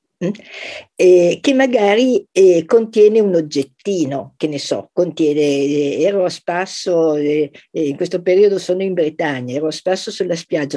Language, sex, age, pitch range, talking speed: Italian, female, 50-69, 145-195 Hz, 160 wpm